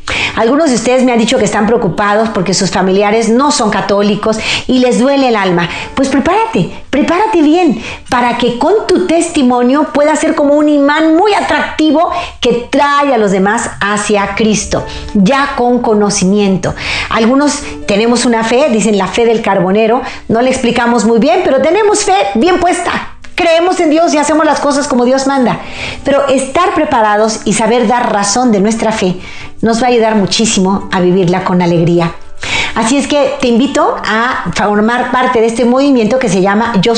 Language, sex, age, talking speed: Spanish, female, 40-59, 175 wpm